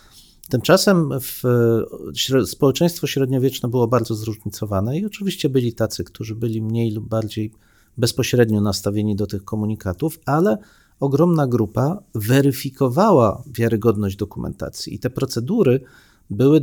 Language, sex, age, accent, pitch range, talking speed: Polish, male, 40-59, native, 110-140 Hz, 110 wpm